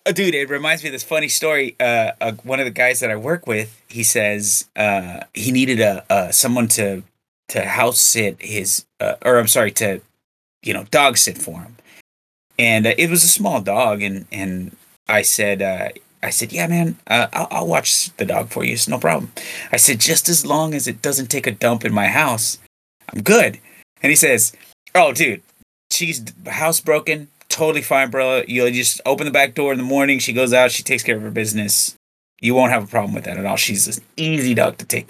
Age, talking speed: 30-49, 220 wpm